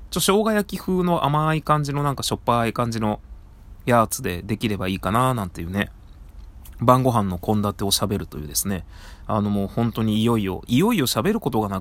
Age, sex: 20-39, male